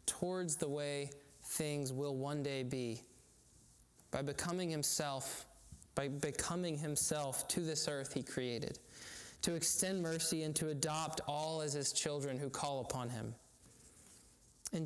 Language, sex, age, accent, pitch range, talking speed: English, male, 20-39, American, 130-155 Hz, 135 wpm